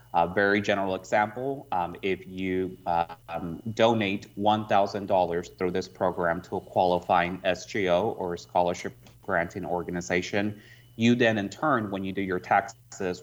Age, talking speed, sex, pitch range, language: 30-49, 140 wpm, male, 90-105 Hz, English